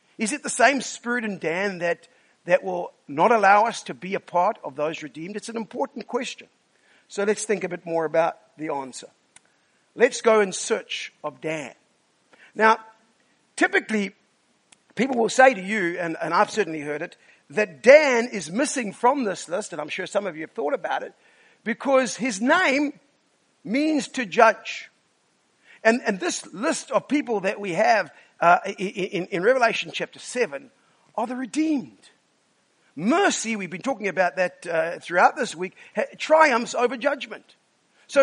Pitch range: 175-240 Hz